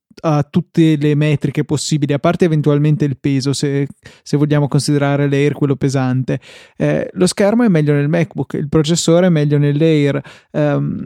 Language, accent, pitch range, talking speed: Italian, native, 140-160 Hz, 165 wpm